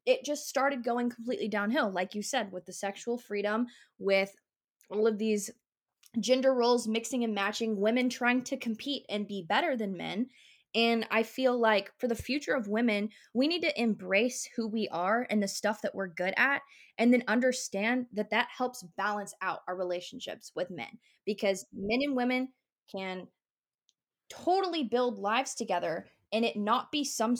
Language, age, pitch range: English, 20-39, 210-255 Hz